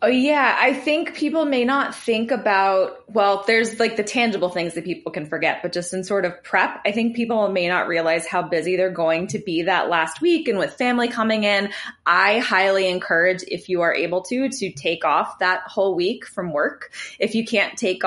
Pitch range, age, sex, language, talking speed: 175-220 Hz, 20-39, female, English, 215 wpm